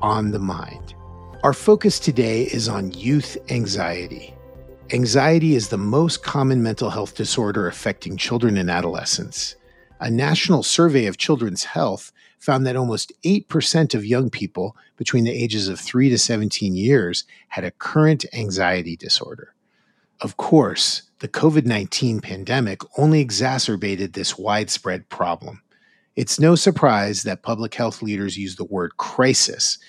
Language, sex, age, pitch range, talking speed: English, male, 40-59, 100-135 Hz, 140 wpm